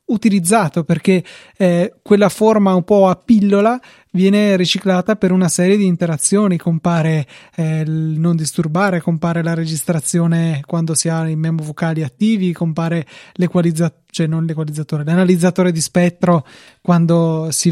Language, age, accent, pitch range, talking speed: Italian, 20-39, native, 165-190 Hz, 135 wpm